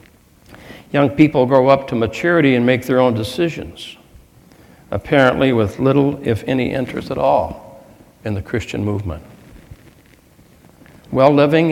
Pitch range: 105-145 Hz